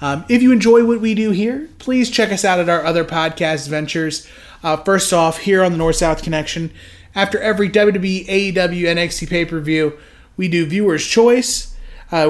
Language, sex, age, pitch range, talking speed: English, male, 30-49, 160-215 Hz, 175 wpm